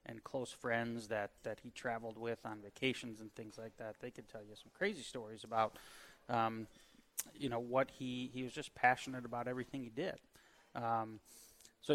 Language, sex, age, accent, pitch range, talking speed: English, male, 30-49, American, 115-130 Hz, 185 wpm